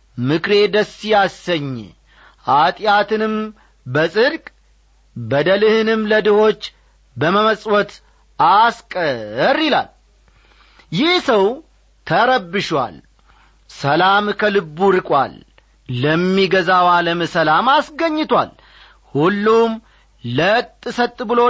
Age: 40-59